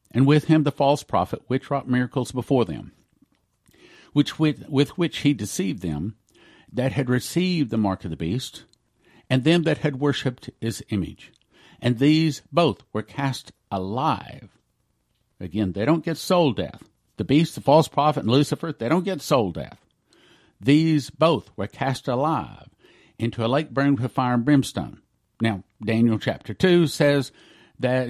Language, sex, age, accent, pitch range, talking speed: English, male, 50-69, American, 115-155 Hz, 160 wpm